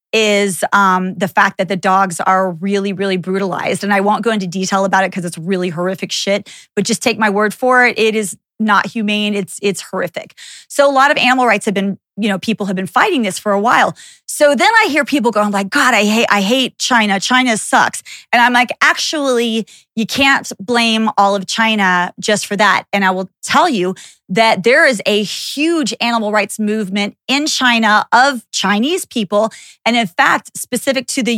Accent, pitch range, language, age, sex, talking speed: American, 200-250 Hz, English, 20-39, female, 205 wpm